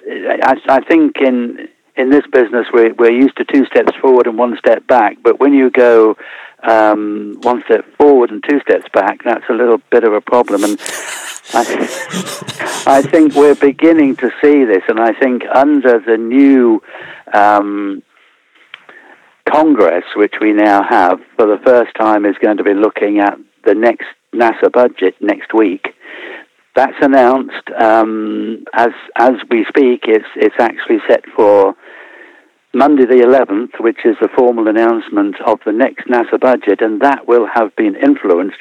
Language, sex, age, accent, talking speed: English, male, 60-79, British, 165 wpm